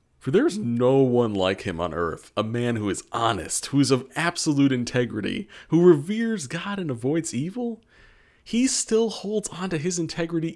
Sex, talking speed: male, 180 wpm